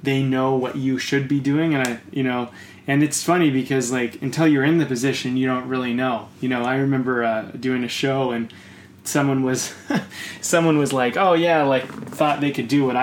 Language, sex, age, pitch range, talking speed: English, male, 20-39, 120-145 Hz, 215 wpm